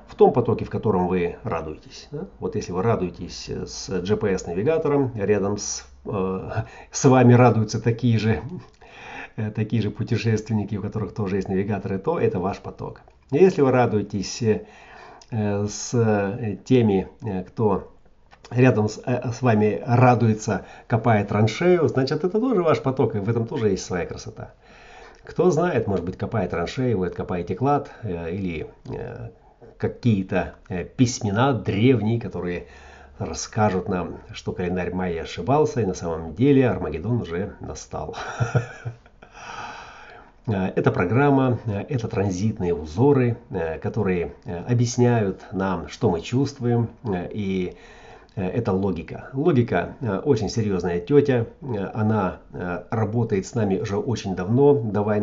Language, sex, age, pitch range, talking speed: Russian, male, 40-59, 95-120 Hz, 130 wpm